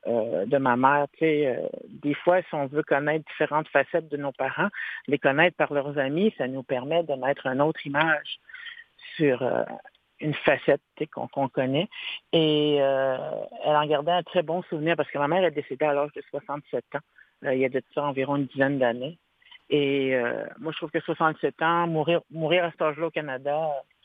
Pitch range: 140-170 Hz